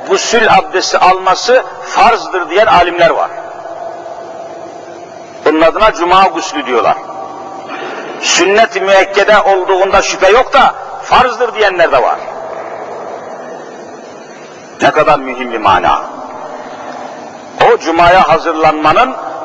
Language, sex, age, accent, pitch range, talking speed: Turkish, male, 60-79, native, 195-295 Hz, 90 wpm